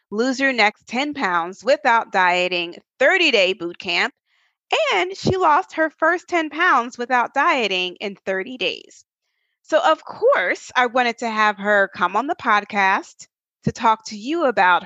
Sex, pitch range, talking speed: female, 195-275 Hz, 160 wpm